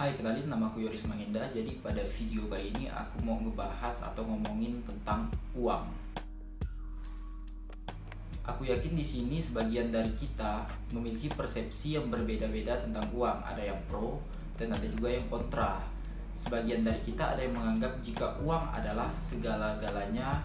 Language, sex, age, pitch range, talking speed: Malay, male, 20-39, 105-120 Hz, 145 wpm